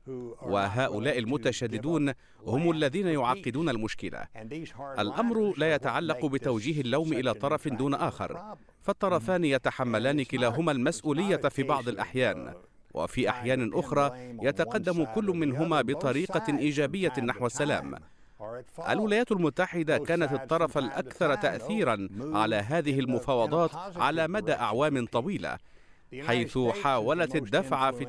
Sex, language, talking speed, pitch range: male, Arabic, 105 wpm, 120-165 Hz